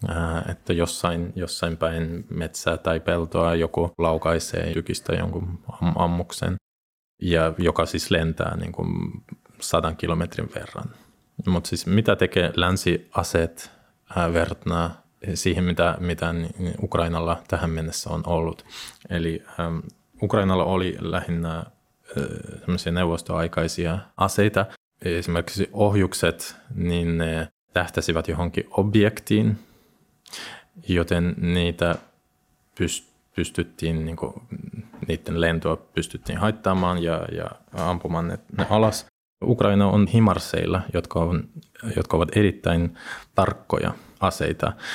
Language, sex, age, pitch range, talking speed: Finnish, male, 20-39, 85-95 Hz, 95 wpm